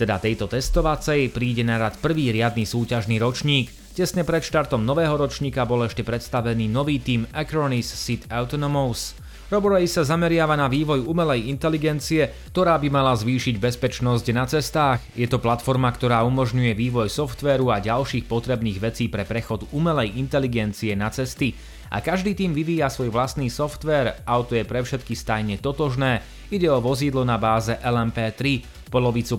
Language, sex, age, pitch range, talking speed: Slovak, male, 30-49, 115-140 Hz, 150 wpm